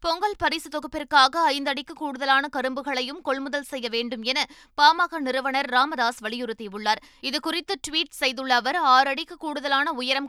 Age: 20-39